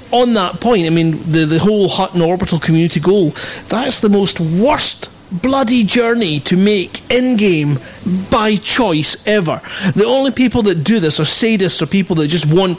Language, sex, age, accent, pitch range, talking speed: English, male, 30-49, British, 160-195 Hz, 175 wpm